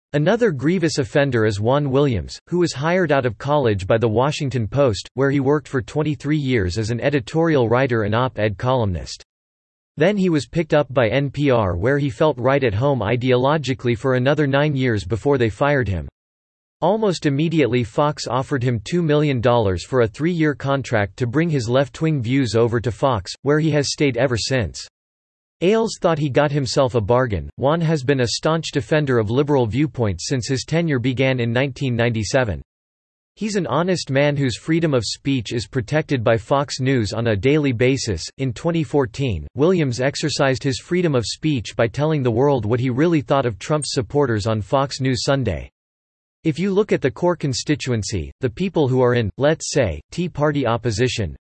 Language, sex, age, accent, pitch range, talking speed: English, male, 40-59, American, 115-150 Hz, 180 wpm